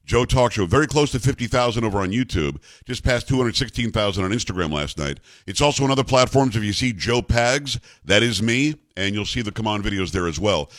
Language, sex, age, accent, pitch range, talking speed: English, male, 50-69, American, 105-135 Hz, 225 wpm